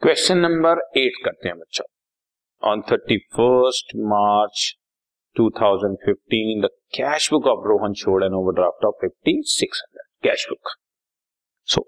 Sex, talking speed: male, 140 wpm